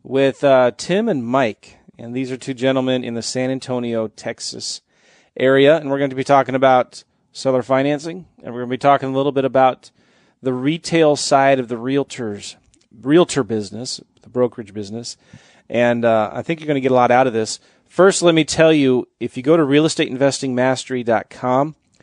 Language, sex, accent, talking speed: English, male, American, 190 wpm